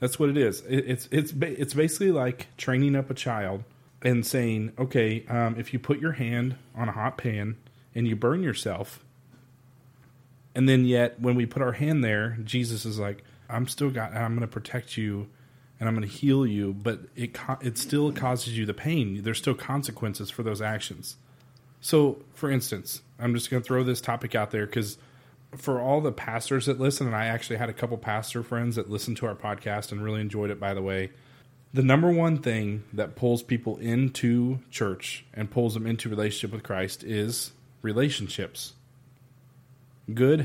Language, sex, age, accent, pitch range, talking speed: English, male, 30-49, American, 110-130 Hz, 190 wpm